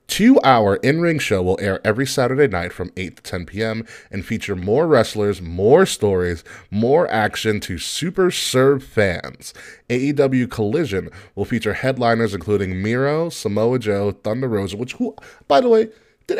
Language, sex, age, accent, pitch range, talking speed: English, male, 20-39, American, 100-130 Hz, 155 wpm